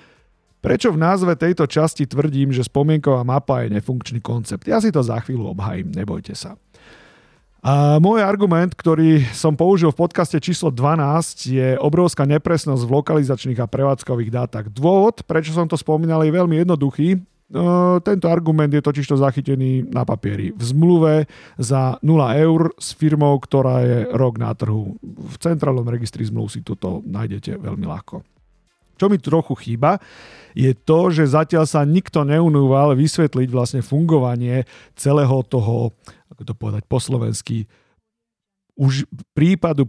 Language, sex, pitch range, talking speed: Slovak, male, 120-160 Hz, 145 wpm